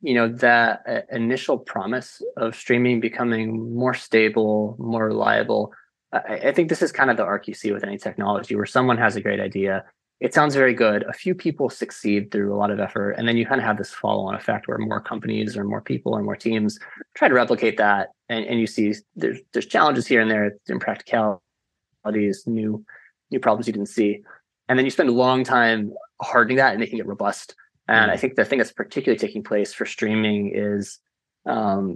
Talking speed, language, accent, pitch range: 210 wpm, English, American, 100-115 Hz